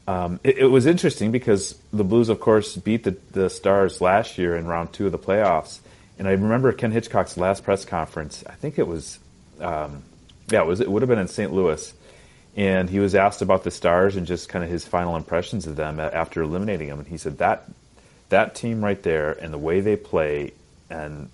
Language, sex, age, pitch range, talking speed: English, male, 30-49, 80-105 Hz, 220 wpm